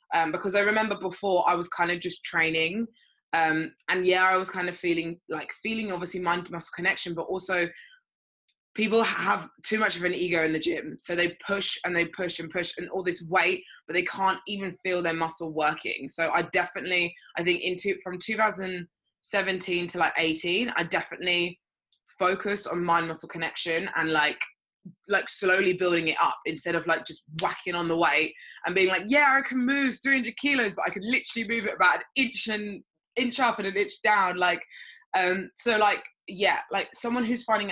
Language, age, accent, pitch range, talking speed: English, 20-39, British, 170-205 Hz, 195 wpm